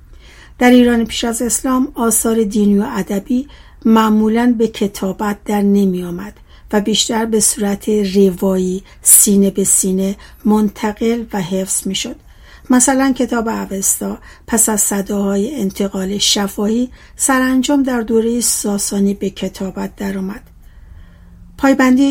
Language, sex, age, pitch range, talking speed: Persian, female, 60-79, 195-230 Hz, 115 wpm